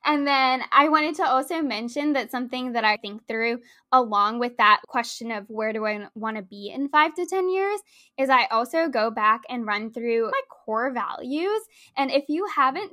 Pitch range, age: 230-315 Hz, 10-29